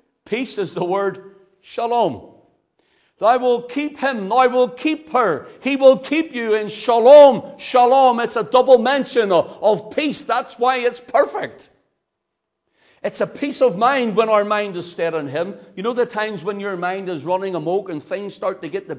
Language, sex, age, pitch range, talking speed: English, male, 60-79, 185-250 Hz, 185 wpm